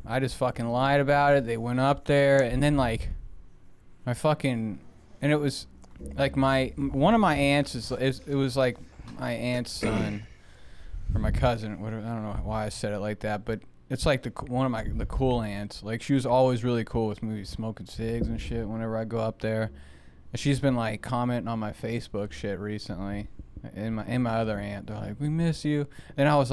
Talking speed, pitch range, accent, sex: 215 wpm, 110-135 Hz, American, male